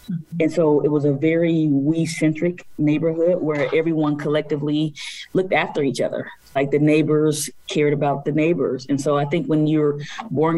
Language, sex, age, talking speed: English, female, 20-39, 165 wpm